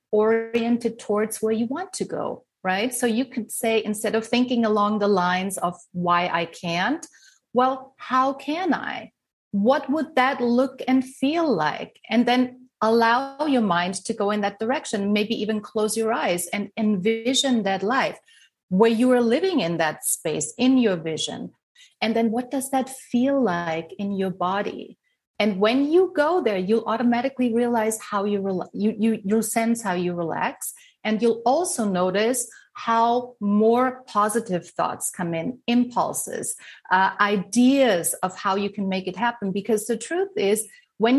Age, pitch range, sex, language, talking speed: 30-49, 200-250 Hz, female, English, 170 wpm